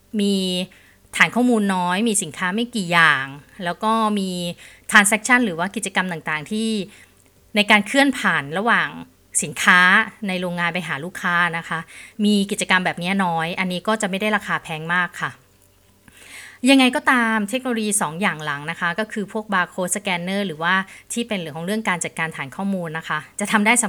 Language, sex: Thai, female